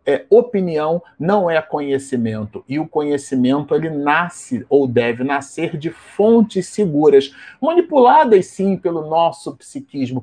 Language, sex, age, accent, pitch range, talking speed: Portuguese, male, 40-59, Brazilian, 140-195 Hz, 115 wpm